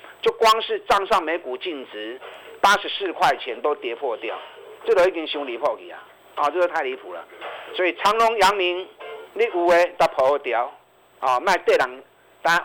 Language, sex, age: Chinese, male, 50-69